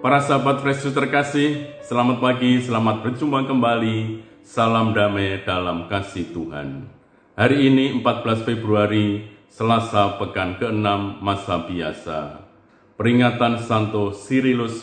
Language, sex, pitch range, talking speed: Indonesian, male, 95-120 Hz, 105 wpm